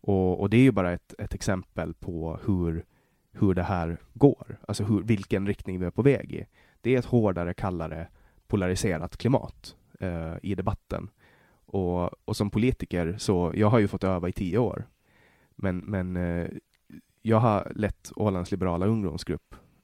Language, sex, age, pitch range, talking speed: Swedish, male, 20-39, 90-110 Hz, 160 wpm